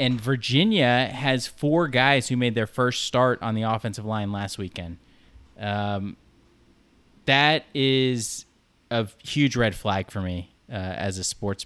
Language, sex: English, male